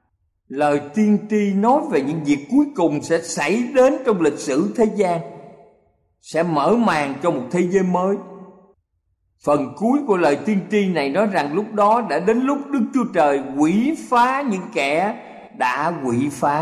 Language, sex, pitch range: Thai, male, 120-195 Hz